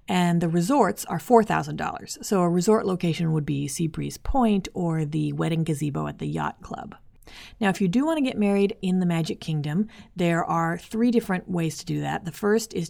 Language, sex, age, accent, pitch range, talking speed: English, female, 30-49, American, 150-195 Hz, 205 wpm